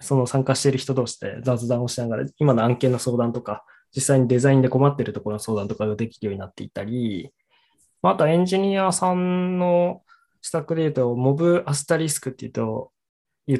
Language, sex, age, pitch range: Japanese, male, 20-39, 120-150 Hz